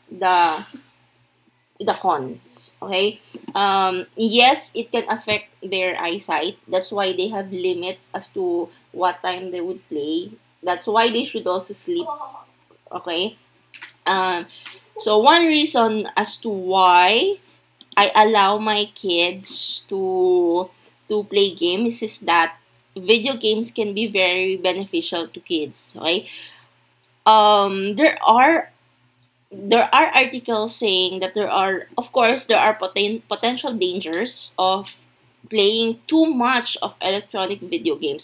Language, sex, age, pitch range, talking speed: English, female, 20-39, 185-235 Hz, 125 wpm